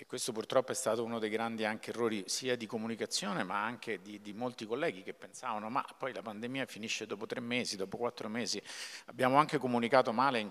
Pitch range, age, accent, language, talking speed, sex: 125-175 Hz, 50-69, native, Italian, 210 wpm, male